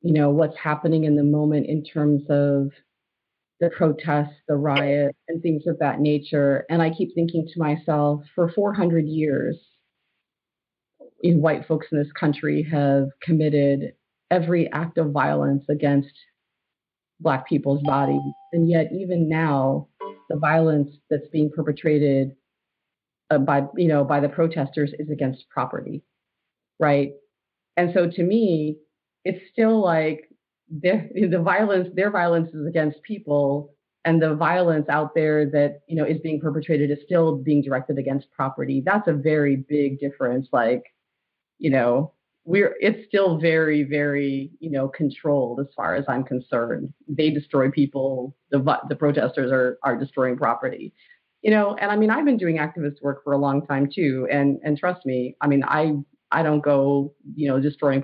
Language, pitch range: English, 140-165 Hz